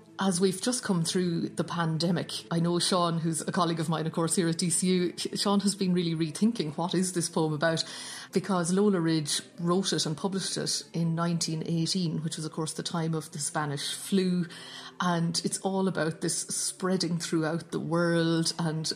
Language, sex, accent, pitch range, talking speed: English, female, Irish, 155-175 Hz, 190 wpm